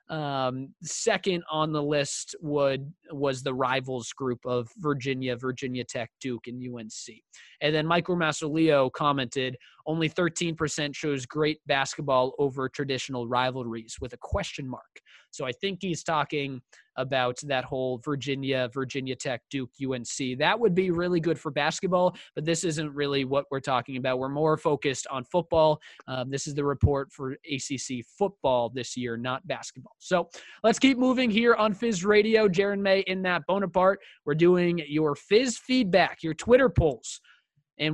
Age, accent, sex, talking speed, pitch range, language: 20-39, American, male, 160 wpm, 140-195 Hz, English